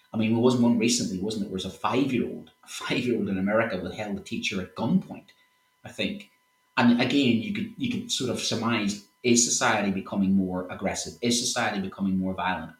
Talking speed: 205 wpm